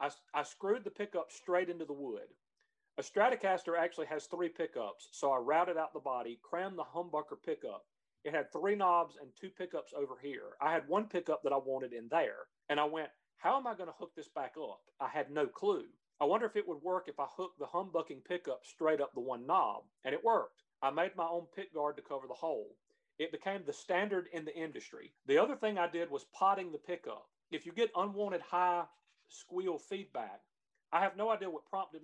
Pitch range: 160-220 Hz